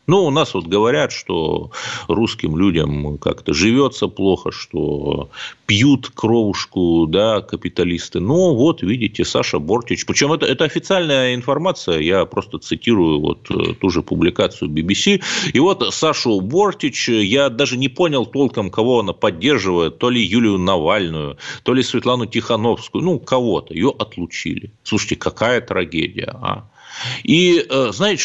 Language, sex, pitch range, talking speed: Russian, male, 100-145 Hz, 135 wpm